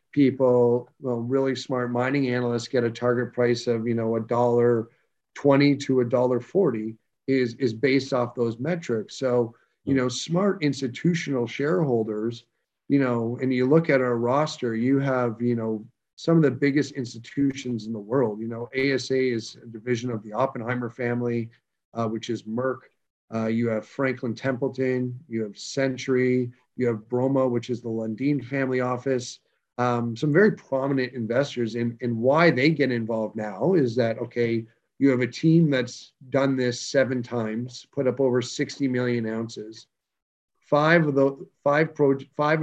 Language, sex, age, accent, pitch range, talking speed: English, male, 40-59, American, 120-140 Hz, 160 wpm